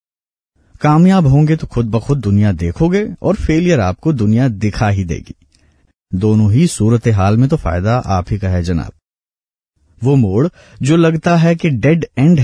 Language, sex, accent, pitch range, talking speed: Hindi, male, native, 95-140 Hz, 165 wpm